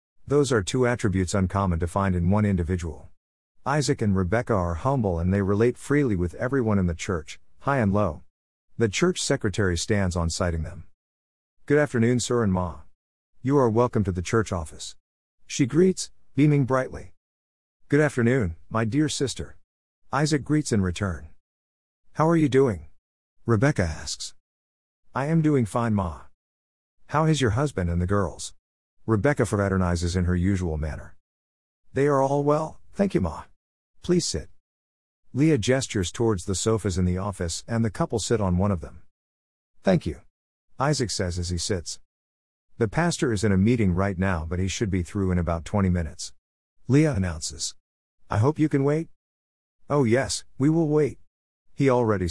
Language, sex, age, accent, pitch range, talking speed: English, male, 50-69, American, 80-120 Hz, 165 wpm